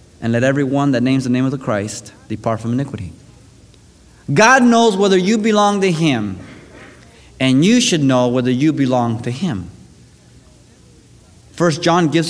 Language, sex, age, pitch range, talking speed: English, male, 30-49, 130-205 Hz, 155 wpm